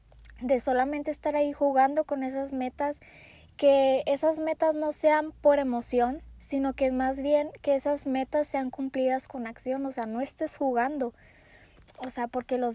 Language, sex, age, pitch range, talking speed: Spanish, female, 20-39, 245-290 Hz, 170 wpm